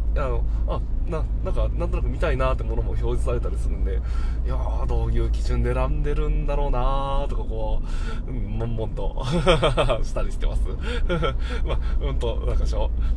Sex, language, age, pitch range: male, Japanese, 20-39, 95-135 Hz